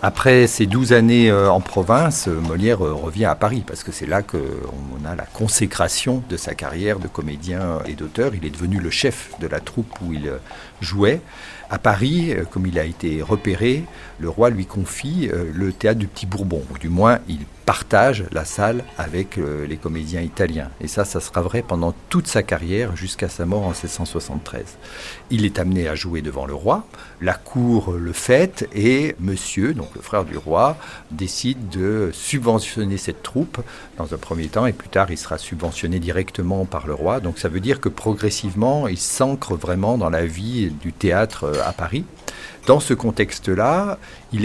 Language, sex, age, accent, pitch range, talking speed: French, male, 50-69, French, 85-110 Hz, 180 wpm